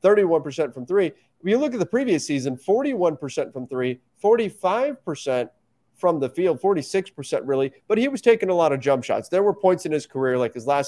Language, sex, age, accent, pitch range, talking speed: English, male, 30-49, American, 125-165 Hz, 200 wpm